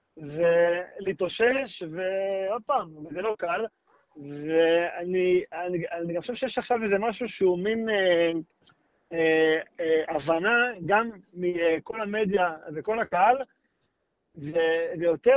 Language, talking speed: Hebrew, 105 wpm